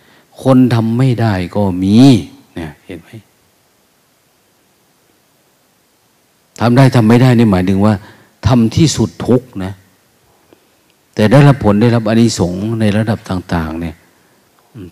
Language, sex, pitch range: Thai, male, 95-120 Hz